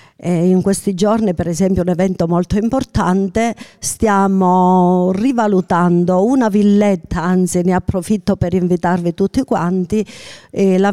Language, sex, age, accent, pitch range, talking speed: Italian, female, 50-69, native, 175-205 Hz, 115 wpm